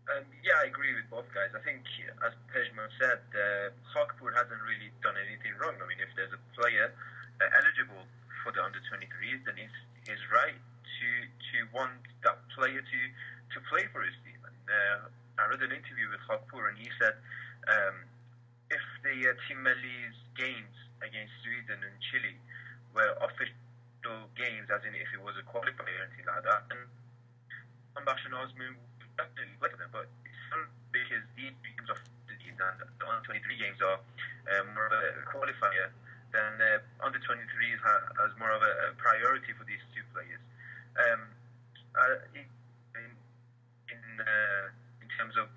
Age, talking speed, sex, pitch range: 20-39, 170 wpm, male, 115-125 Hz